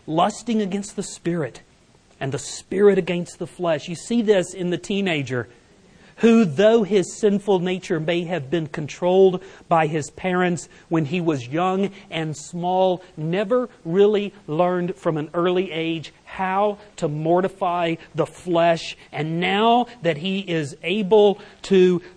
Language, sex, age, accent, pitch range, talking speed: English, male, 40-59, American, 145-185 Hz, 145 wpm